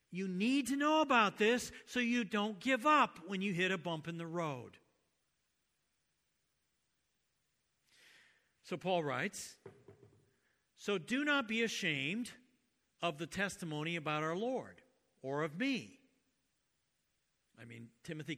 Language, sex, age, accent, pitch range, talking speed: English, male, 60-79, American, 155-230 Hz, 125 wpm